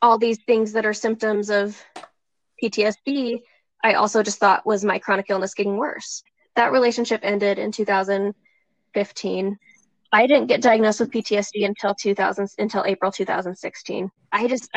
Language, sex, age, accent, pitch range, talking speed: English, female, 10-29, American, 200-225 Hz, 135 wpm